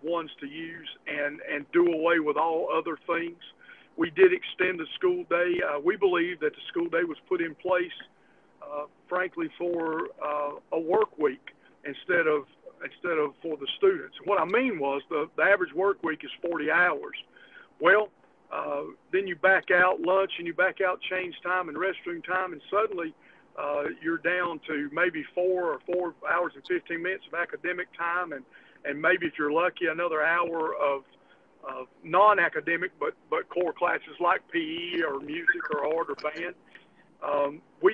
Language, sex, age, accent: English, male, 50-69, American